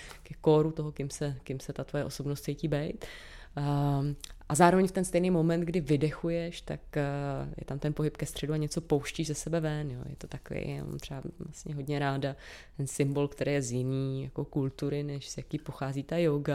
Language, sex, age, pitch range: Czech, female, 20-39, 145-160 Hz